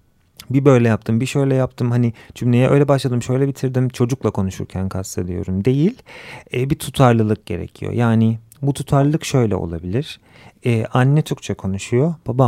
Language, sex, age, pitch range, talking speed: Turkish, male, 40-59, 105-135 Hz, 140 wpm